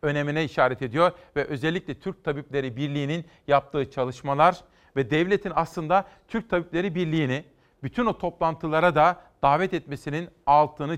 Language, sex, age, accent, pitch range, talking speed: Turkish, male, 40-59, native, 145-180 Hz, 125 wpm